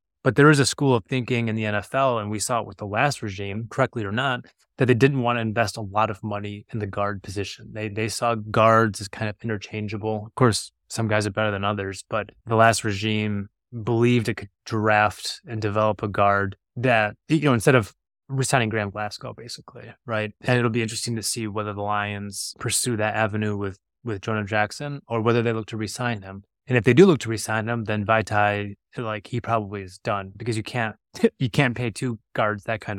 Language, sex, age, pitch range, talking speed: English, male, 20-39, 105-120 Hz, 220 wpm